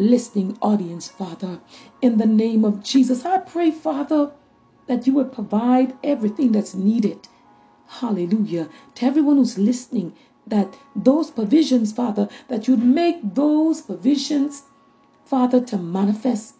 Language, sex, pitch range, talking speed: English, female, 210-270 Hz, 125 wpm